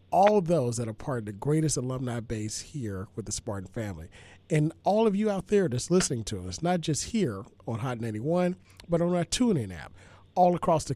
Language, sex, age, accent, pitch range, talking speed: English, male, 40-59, American, 105-160 Hz, 220 wpm